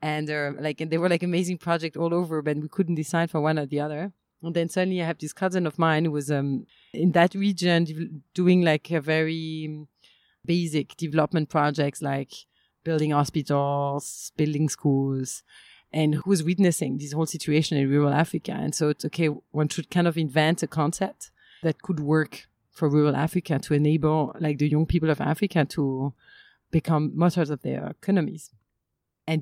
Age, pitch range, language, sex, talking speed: 30-49, 145-170 Hz, English, female, 180 wpm